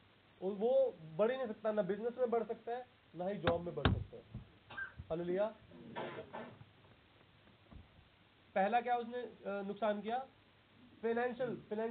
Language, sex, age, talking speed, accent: Hindi, male, 30-49, 85 wpm, native